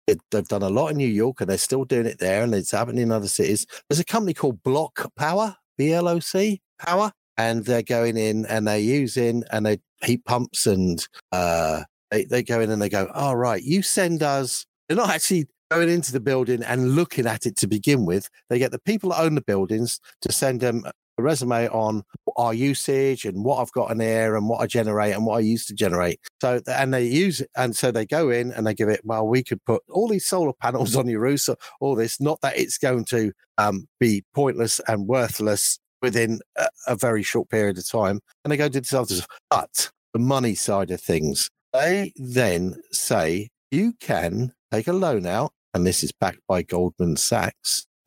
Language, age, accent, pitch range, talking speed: English, 50-69, British, 110-140 Hz, 215 wpm